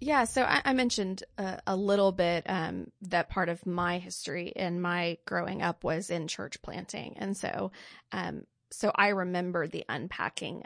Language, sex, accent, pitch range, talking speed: English, female, American, 170-200 Hz, 175 wpm